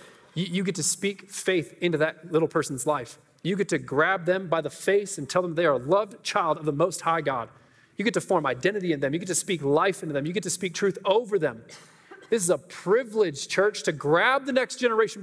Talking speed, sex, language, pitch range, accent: 245 wpm, male, English, 135-180 Hz, American